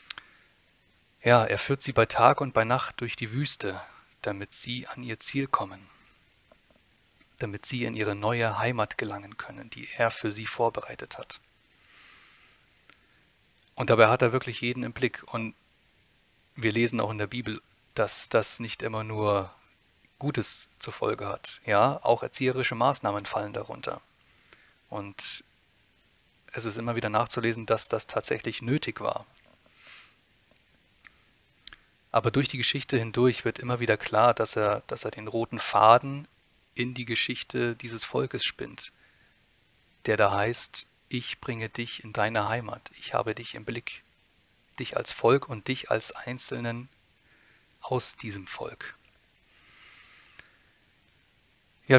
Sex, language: male, German